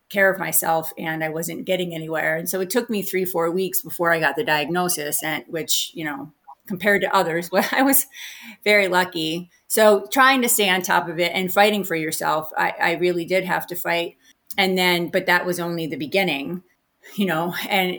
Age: 30-49